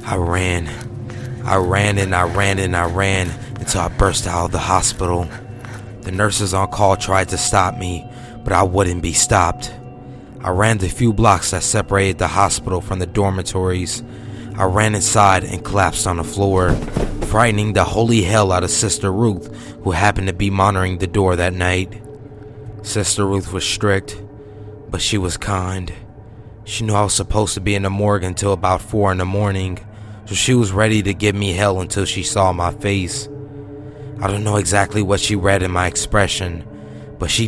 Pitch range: 95-115 Hz